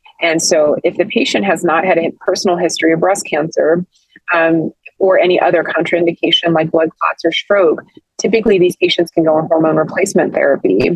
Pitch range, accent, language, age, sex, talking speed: 160-180 Hz, American, English, 20-39, female, 180 wpm